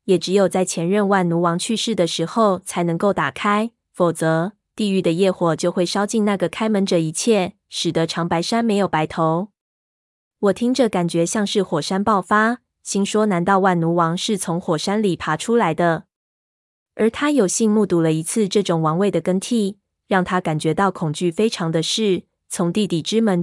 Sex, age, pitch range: female, 20-39, 170-210 Hz